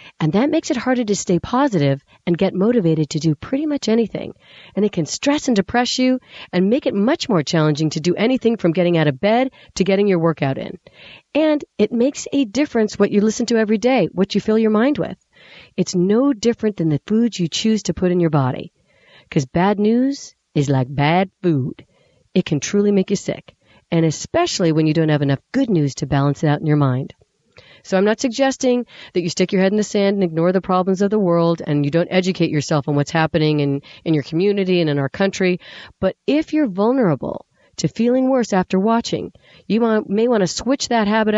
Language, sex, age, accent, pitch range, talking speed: English, female, 40-59, American, 160-230 Hz, 220 wpm